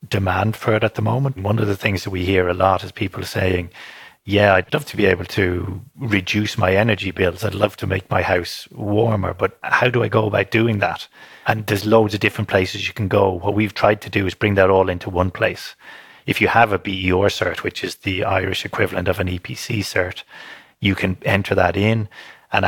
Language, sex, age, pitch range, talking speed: English, male, 30-49, 95-105 Hz, 230 wpm